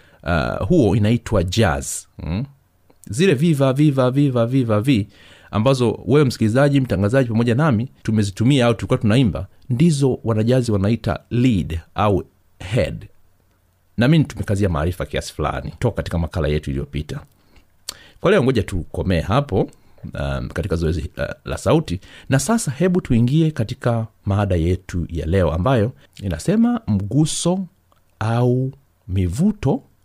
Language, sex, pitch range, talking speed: Swahili, male, 90-130 Hz, 120 wpm